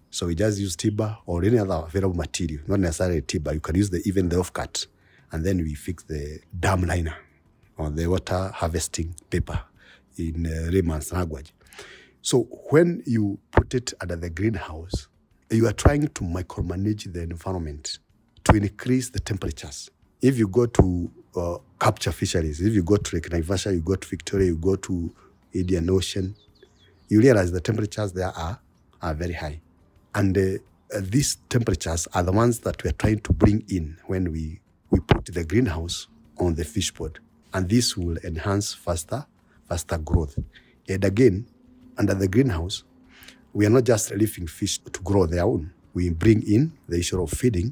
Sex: male